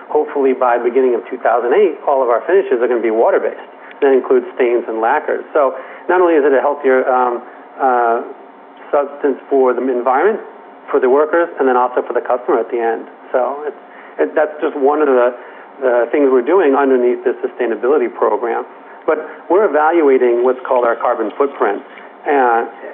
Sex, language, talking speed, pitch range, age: male, English, 185 wpm, 125-160 Hz, 40-59